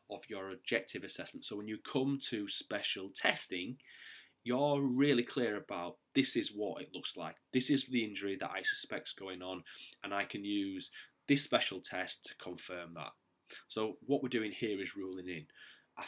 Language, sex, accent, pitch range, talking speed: English, male, British, 95-120 Hz, 185 wpm